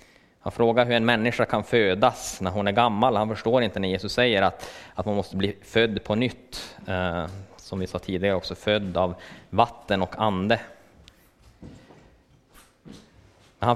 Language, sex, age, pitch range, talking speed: Swedish, male, 20-39, 95-115 Hz, 155 wpm